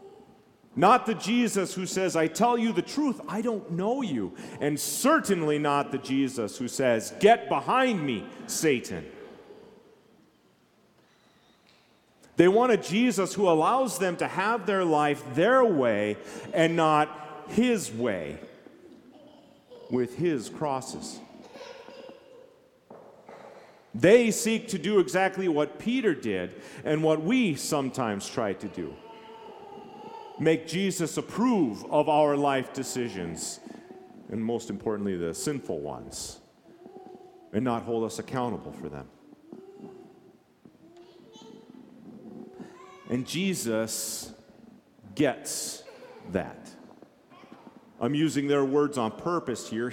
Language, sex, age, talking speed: English, male, 40-59, 110 wpm